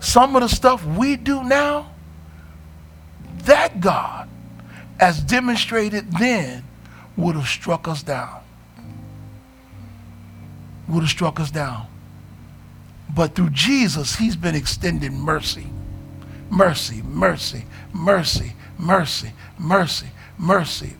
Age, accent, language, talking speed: 60-79, American, English, 100 wpm